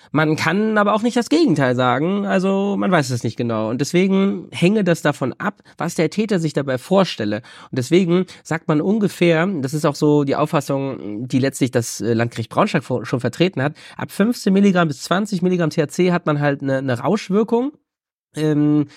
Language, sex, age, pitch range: German, male, 30-49, 135-180 Hz